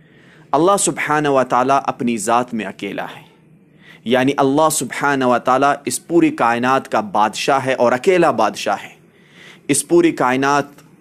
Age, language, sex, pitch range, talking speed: 30-49, Urdu, male, 120-150 Hz, 145 wpm